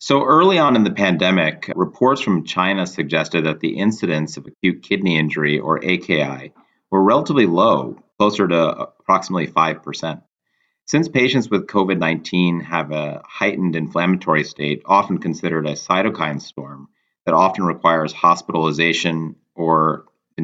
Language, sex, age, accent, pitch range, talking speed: English, male, 30-49, American, 75-95 Hz, 135 wpm